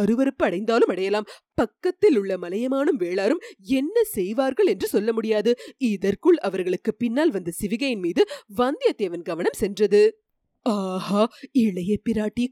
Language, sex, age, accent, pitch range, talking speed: Tamil, female, 30-49, native, 200-270 Hz, 105 wpm